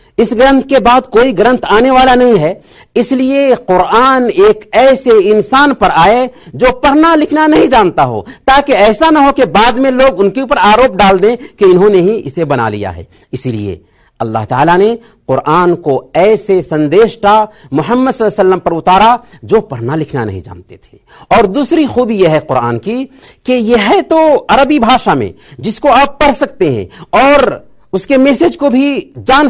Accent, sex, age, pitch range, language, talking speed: native, male, 50-69, 165-255 Hz, Hindi, 165 wpm